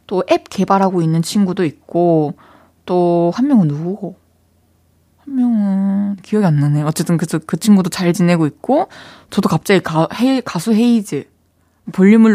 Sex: female